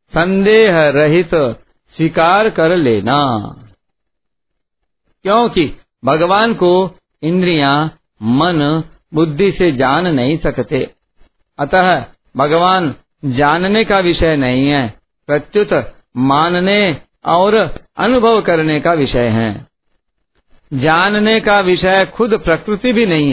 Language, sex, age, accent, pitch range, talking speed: Hindi, male, 50-69, native, 145-195 Hz, 95 wpm